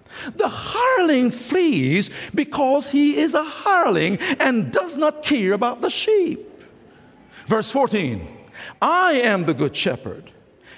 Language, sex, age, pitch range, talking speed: English, male, 60-79, 215-340 Hz, 120 wpm